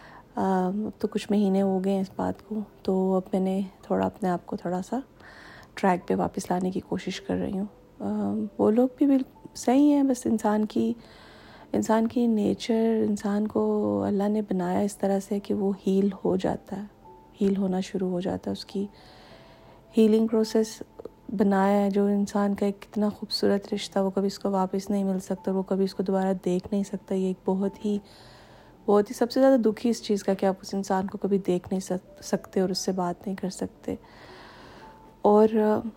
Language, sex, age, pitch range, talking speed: Urdu, female, 30-49, 185-205 Hz, 205 wpm